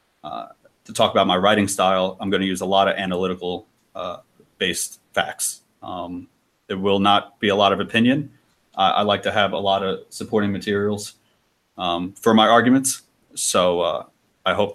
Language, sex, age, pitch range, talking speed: English, male, 30-49, 90-110 Hz, 180 wpm